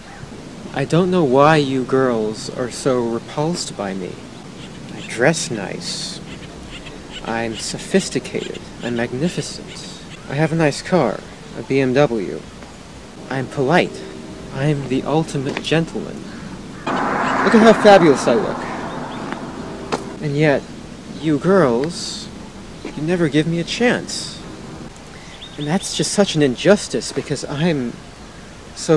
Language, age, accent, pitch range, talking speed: Greek, 40-59, American, 125-165 Hz, 115 wpm